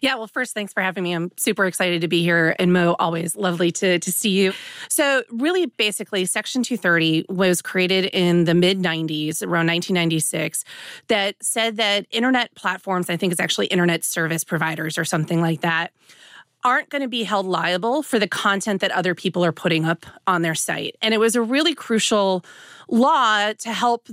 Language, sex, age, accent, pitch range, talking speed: English, female, 30-49, American, 175-220 Hz, 190 wpm